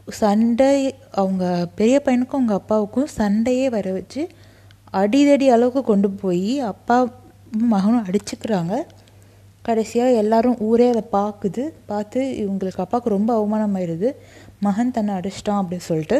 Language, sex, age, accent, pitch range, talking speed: Tamil, female, 20-39, native, 180-220 Hz, 110 wpm